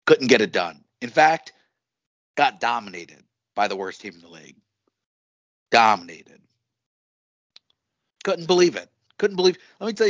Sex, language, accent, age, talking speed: male, English, American, 40-59, 145 wpm